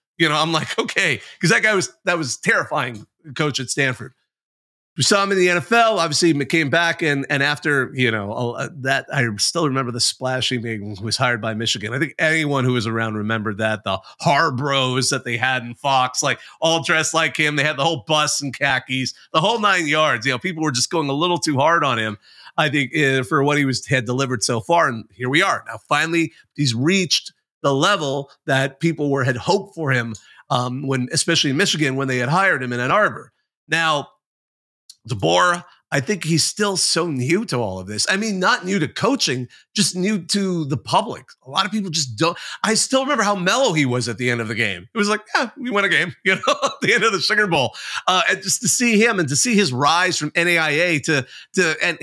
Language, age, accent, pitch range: English, 30-49, American, 130-185 Hz